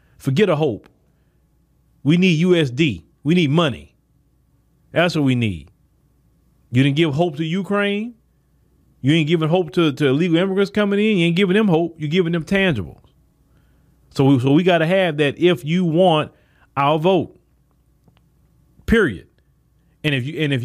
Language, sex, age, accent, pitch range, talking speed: English, male, 40-59, American, 135-185 Hz, 165 wpm